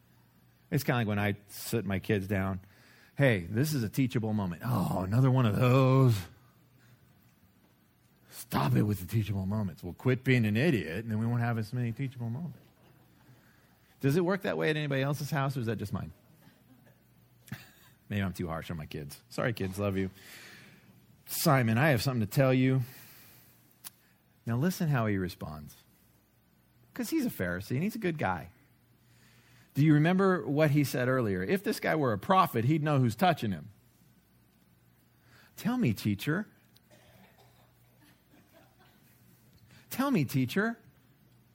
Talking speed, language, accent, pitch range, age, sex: 160 wpm, English, American, 100-145 Hz, 40-59, male